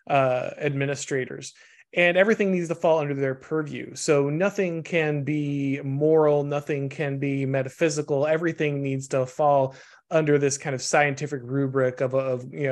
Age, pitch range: 20-39, 130-145 Hz